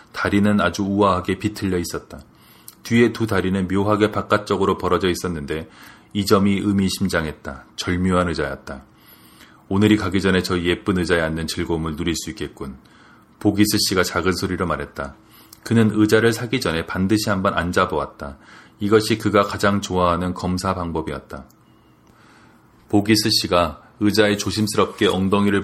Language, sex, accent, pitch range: Korean, male, native, 90-110 Hz